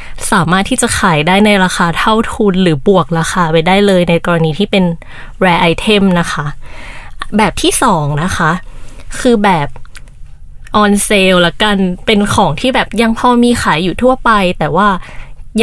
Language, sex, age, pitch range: Thai, female, 20-39, 175-220 Hz